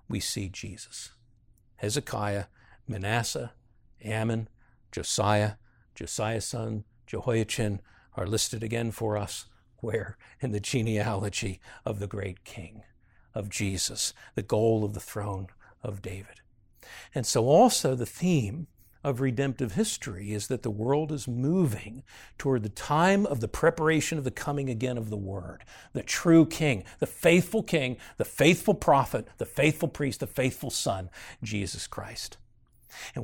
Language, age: English, 60-79